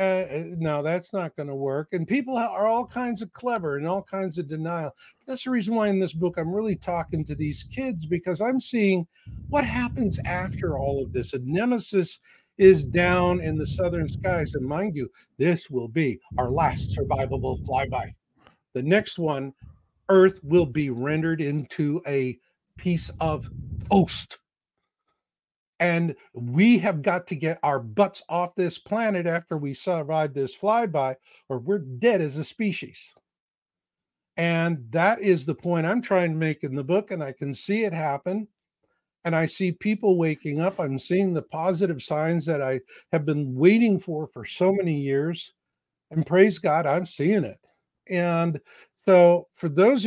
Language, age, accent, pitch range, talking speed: English, 50-69, American, 150-195 Hz, 175 wpm